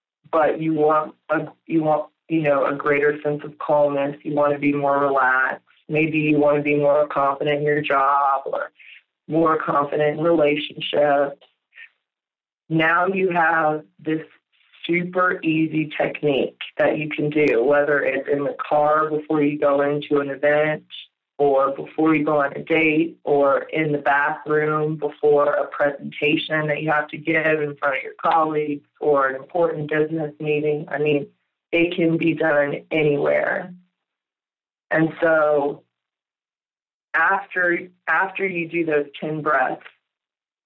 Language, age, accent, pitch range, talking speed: English, 20-39, American, 145-160 Hz, 150 wpm